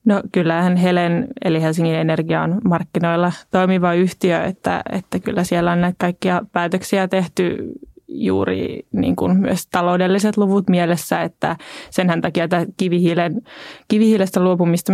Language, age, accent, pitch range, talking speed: Finnish, 20-39, native, 165-185 Hz, 130 wpm